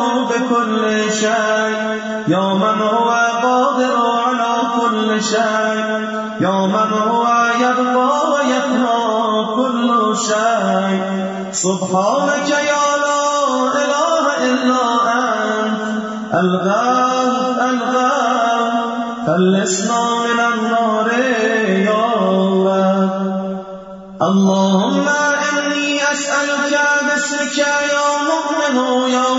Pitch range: 215-255 Hz